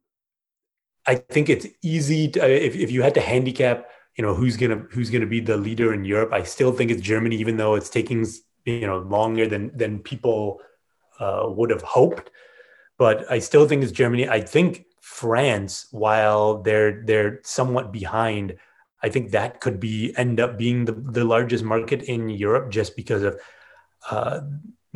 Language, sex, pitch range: English, male, 110-130 Hz